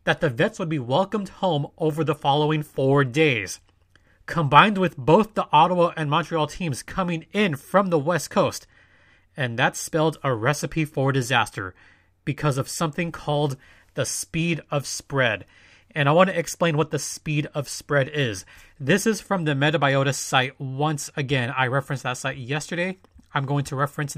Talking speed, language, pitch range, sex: 170 wpm, English, 125-160 Hz, male